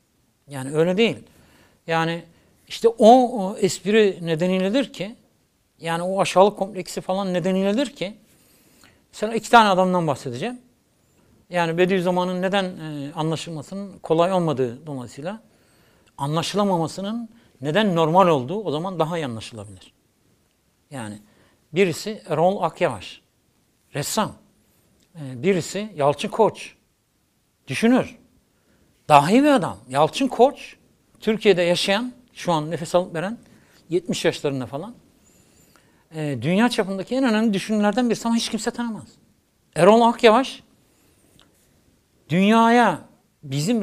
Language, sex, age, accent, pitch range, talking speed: Turkish, male, 60-79, native, 150-210 Hz, 110 wpm